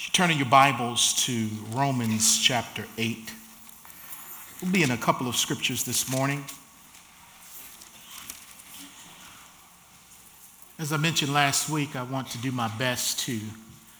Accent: American